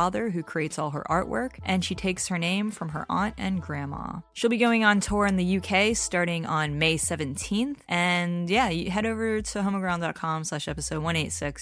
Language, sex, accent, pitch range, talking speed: English, female, American, 160-200 Hz, 185 wpm